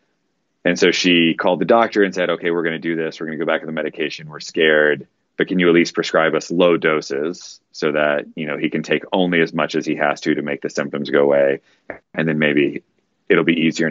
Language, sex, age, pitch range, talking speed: English, male, 30-49, 75-90 Hz, 255 wpm